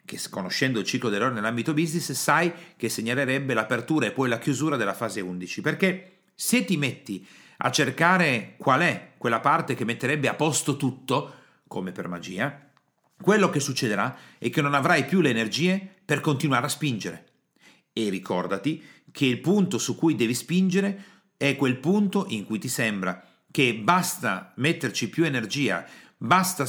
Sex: male